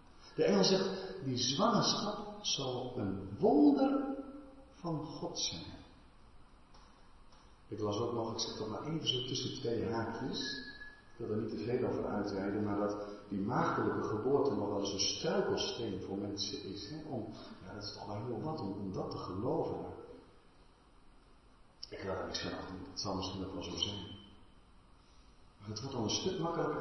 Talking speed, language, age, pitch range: 170 wpm, Dutch, 50-69, 100-155 Hz